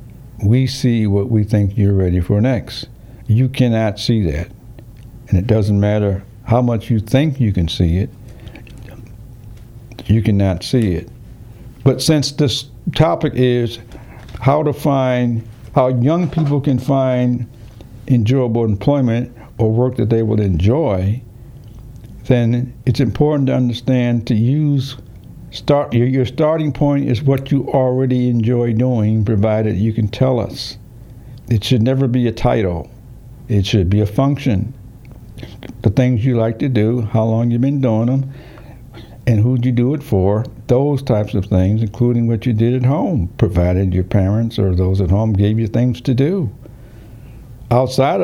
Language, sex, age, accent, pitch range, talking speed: English, male, 60-79, American, 110-130 Hz, 155 wpm